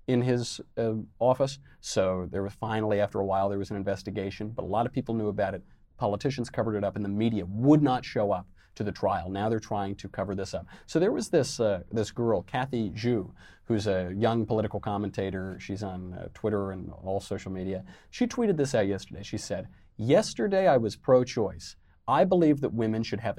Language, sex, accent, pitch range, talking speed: English, male, American, 95-120 Hz, 215 wpm